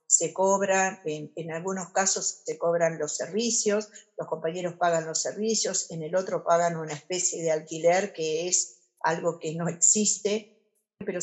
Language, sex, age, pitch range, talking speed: Spanish, female, 50-69, 160-190 Hz, 160 wpm